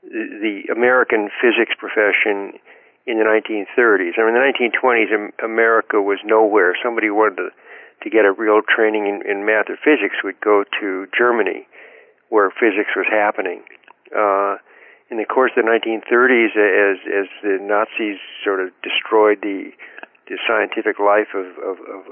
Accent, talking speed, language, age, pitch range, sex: American, 155 wpm, English, 60-79, 105-150 Hz, male